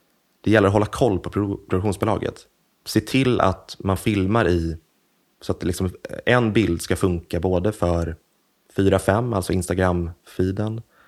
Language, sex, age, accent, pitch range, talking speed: Swedish, male, 30-49, native, 85-105 Hz, 140 wpm